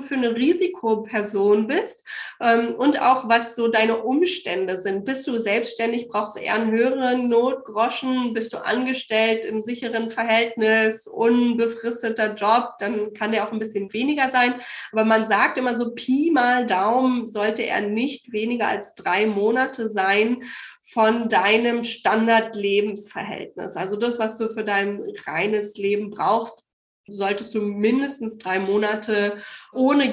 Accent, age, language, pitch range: German, 20-39, German, 215-255 Hz